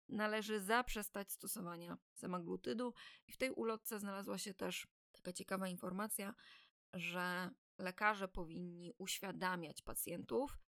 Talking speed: 105 wpm